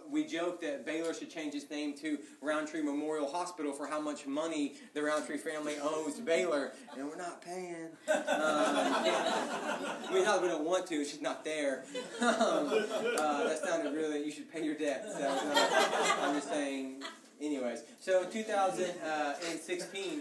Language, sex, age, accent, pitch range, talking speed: English, male, 30-49, American, 145-185 Hz, 170 wpm